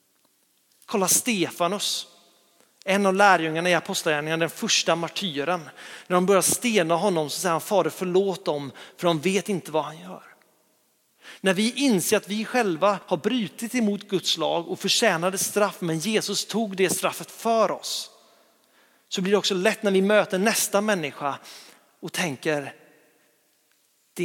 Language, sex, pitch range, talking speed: Swedish, male, 160-200 Hz, 155 wpm